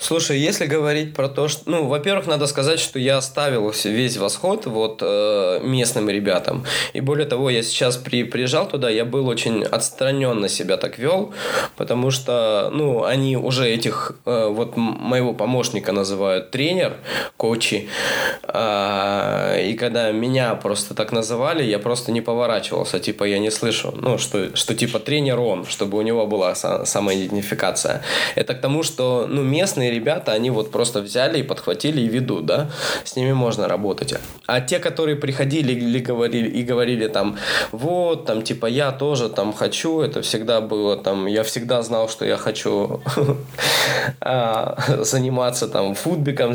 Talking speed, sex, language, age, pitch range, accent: 155 wpm, male, Russian, 20-39, 110-145 Hz, native